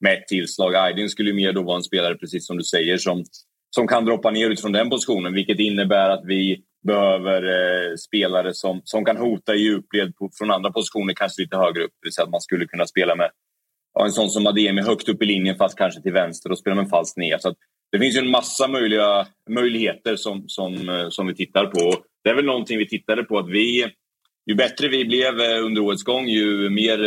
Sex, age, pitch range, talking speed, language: male, 30-49, 95-110 Hz, 230 wpm, Swedish